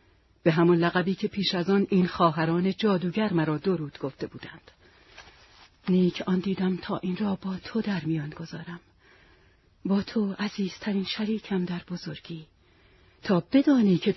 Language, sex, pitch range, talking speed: Persian, female, 180-230 Hz, 145 wpm